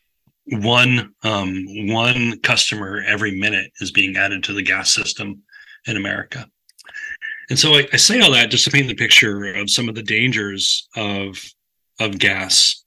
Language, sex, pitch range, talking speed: English, male, 100-125 Hz, 165 wpm